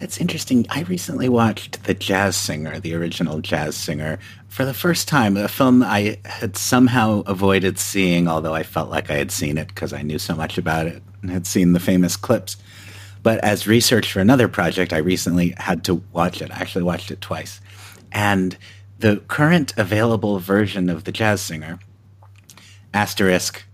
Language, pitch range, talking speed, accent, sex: English, 90-105 Hz, 180 wpm, American, male